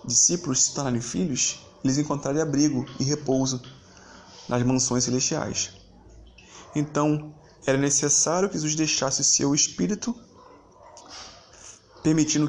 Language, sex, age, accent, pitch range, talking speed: Portuguese, male, 20-39, Brazilian, 120-150 Hz, 100 wpm